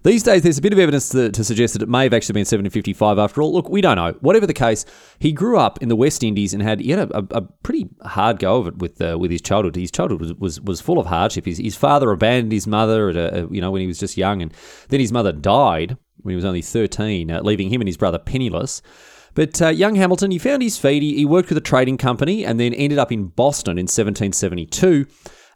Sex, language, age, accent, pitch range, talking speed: male, English, 30-49, Australian, 95-130 Hz, 265 wpm